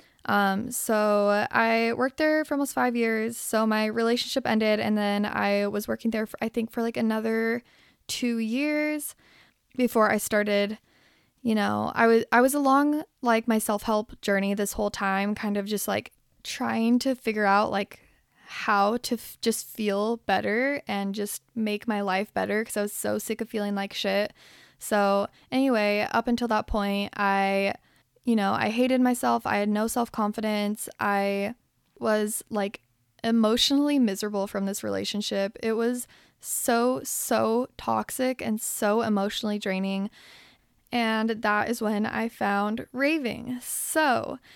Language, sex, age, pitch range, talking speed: English, female, 10-29, 205-235 Hz, 155 wpm